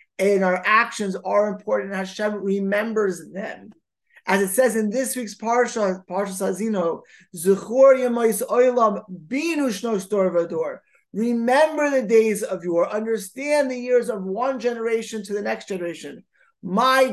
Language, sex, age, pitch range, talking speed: English, male, 20-39, 190-235 Hz, 130 wpm